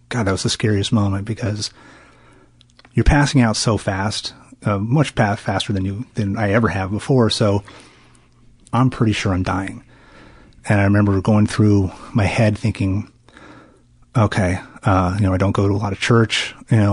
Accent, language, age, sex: American, English, 30-49, male